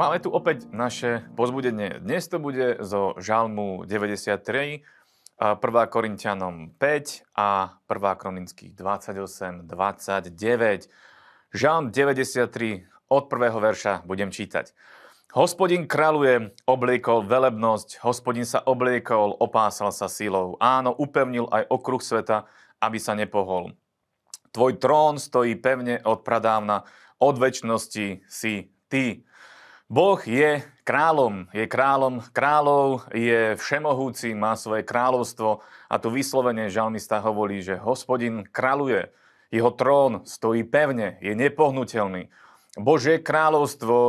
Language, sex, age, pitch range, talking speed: Slovak, male, 30-49, 105-130 Hz, 110 wpm